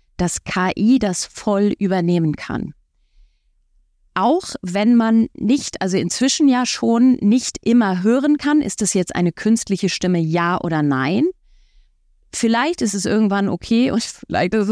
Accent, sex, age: German, female, 30-49